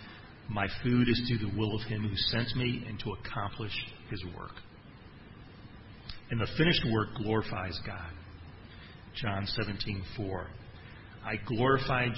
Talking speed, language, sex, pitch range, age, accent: 130 wpm, English, male, 100-115 Hz, 40-59, American